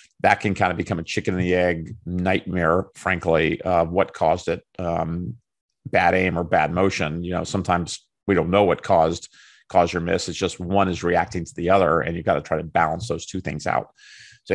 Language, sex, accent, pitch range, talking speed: English, male, American, 85-100 Hz, 215 wpm